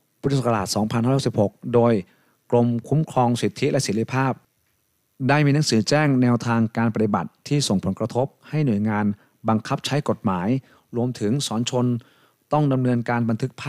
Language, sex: Thai, male